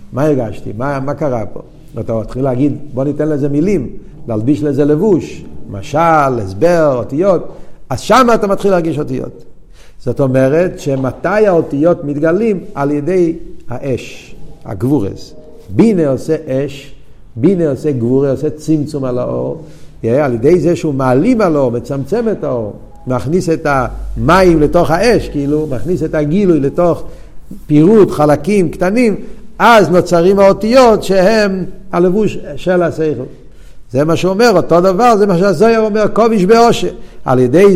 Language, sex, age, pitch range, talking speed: Hebrew, male, 50-69, 140-195 Hz, 140 wpm